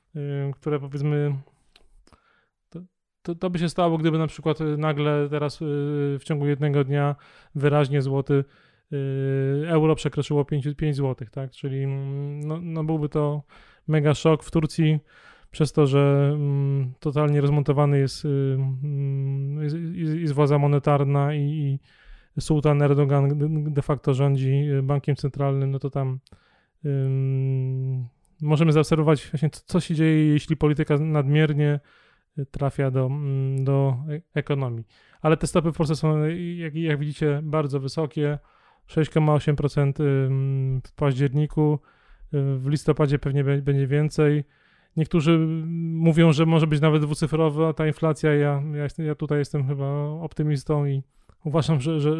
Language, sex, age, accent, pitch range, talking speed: Polish, male, 20-39, native, 140-155 Hz, 120 wpm